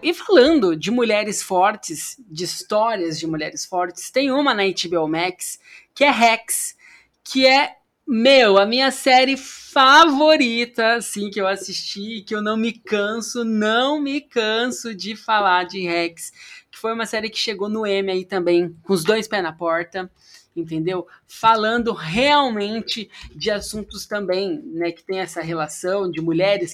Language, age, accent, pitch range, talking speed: Portuguese, 20-39, Brazilian, 180-230 Hz, 155 wpm